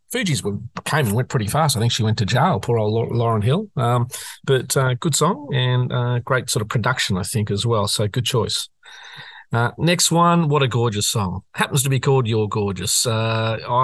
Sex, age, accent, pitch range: male, 40-59, Australian, 110-145 Hz